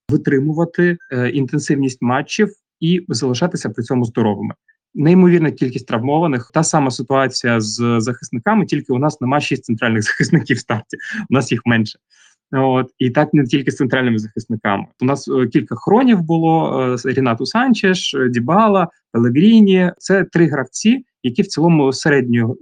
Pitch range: 125-175 Hz